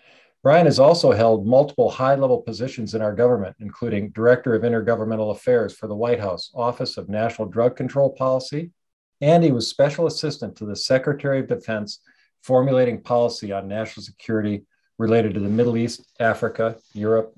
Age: 50-69